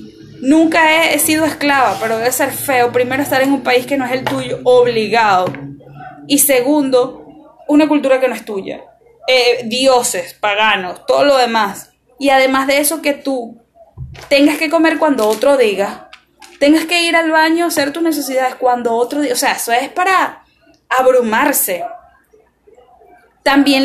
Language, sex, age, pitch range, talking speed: Spanish, female, 10-29, 250-315 Hz, 160 wpm